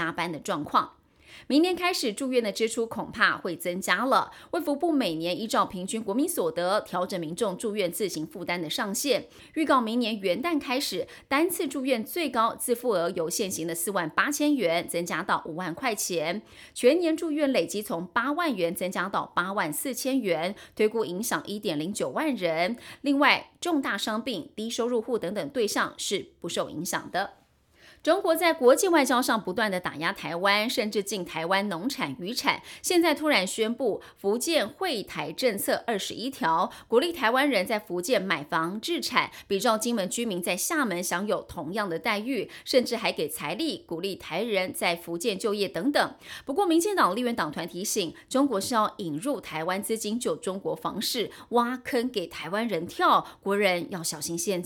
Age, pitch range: 30-49, 185-280 Hz